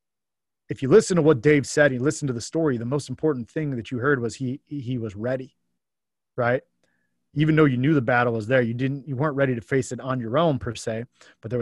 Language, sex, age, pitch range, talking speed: English, male, 30-49, 120-145 Hz, 250 wpm